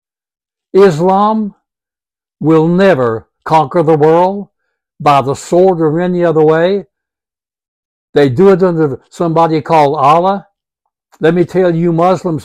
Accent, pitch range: American, 145-180 Hz